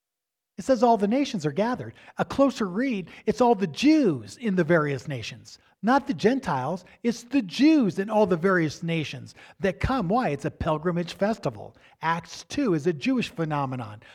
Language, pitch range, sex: English, 155-220 Hz, male